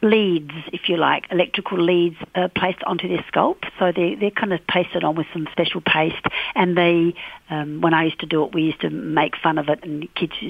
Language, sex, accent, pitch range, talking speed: English, female, Australian, 160-185 Hz, 235 wpm